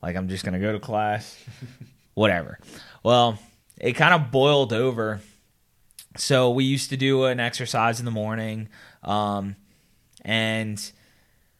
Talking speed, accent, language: 140 wpm, American, English